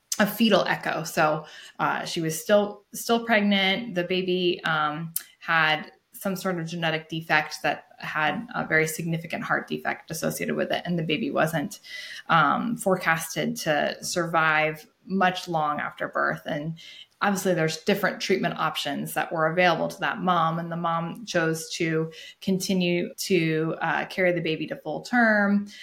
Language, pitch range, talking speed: English, 160-190 Hz, 155 wpm